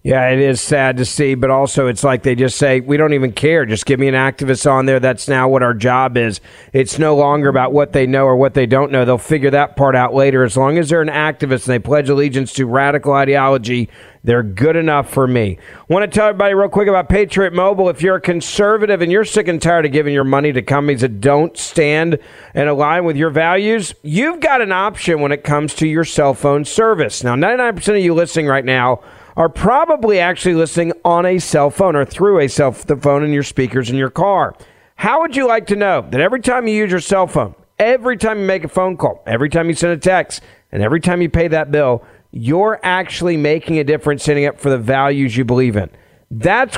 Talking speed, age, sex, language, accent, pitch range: 235 wpm, 40-59, male, English, American, 135-185 Hz